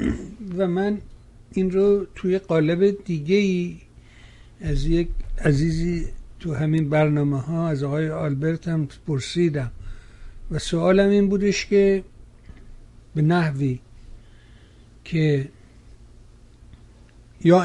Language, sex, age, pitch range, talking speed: Persian, male, 60-79, 145-175 Hz, 95 wpm